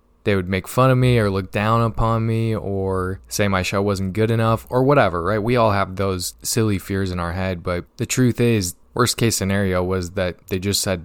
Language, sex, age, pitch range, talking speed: English, male, 20-39, 95-110 Hz, 230 wpm